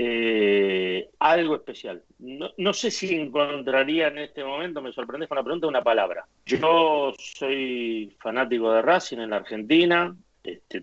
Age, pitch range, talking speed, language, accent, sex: 40-59, 120-175 Hz, 150 wpm, Spanish, Argentinian, male